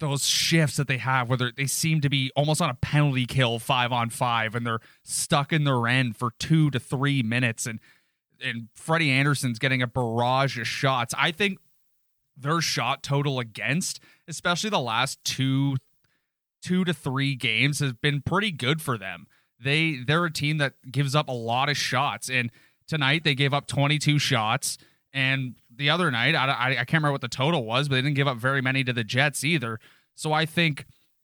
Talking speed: 200 wpm